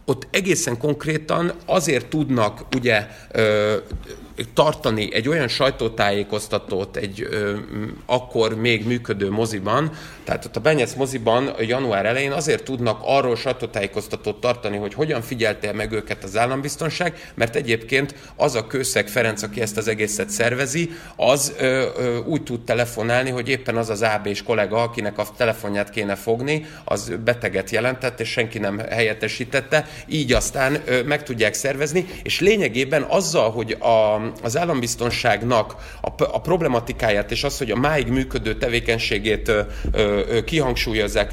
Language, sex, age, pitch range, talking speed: Hungarian, male, 30-49, 110-135 Hz, 135 wpm